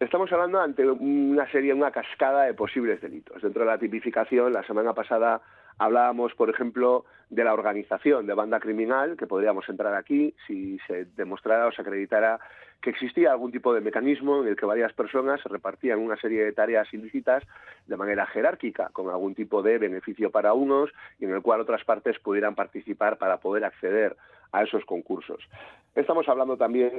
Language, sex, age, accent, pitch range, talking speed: Spanish, male, 40-59, Spanish, 110-140 Hz, 180 wpm